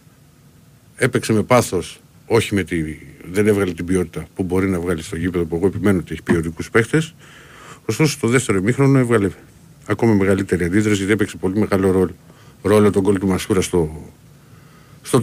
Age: 50-69